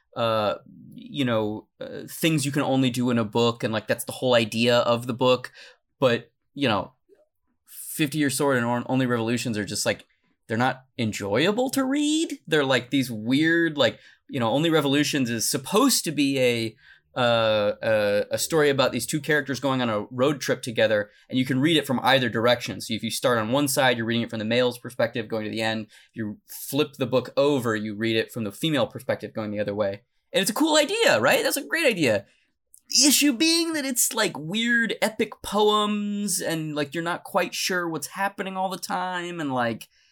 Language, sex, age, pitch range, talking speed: English, male, 20-39, 120-170 Hz, 210 wpm